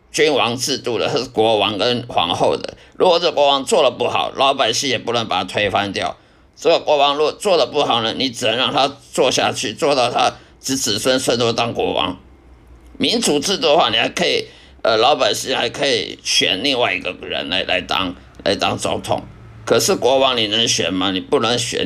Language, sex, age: Chinese, male, 50-69